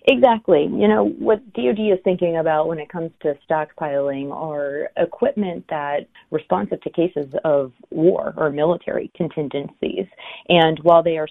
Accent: American